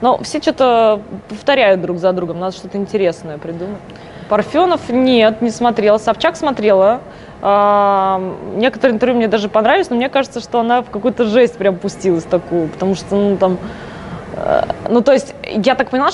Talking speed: 160 wpm